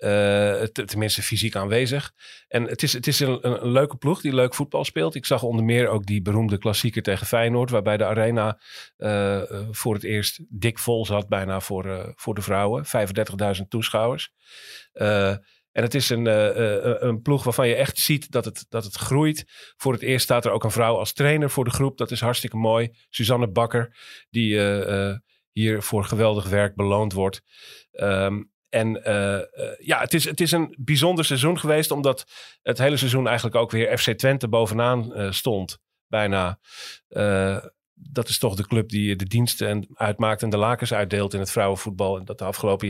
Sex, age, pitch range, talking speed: male, 40-59, 105-125 Hz, 195 wpm